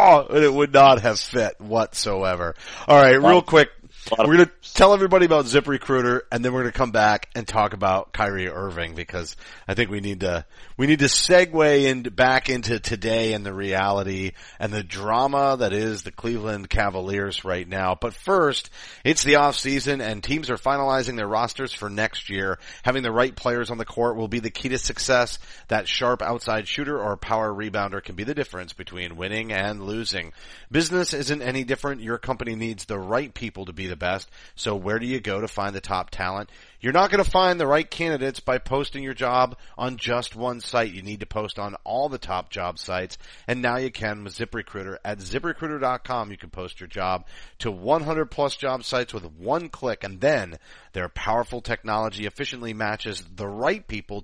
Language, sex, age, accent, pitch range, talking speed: English, male, 30-49, American, 100-135 Hz, 200 wpm